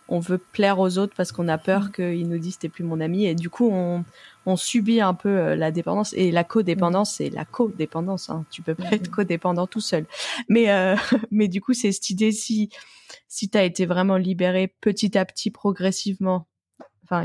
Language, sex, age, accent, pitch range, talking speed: French, female, 20-39, French, 170-205 Hz, 205 wpm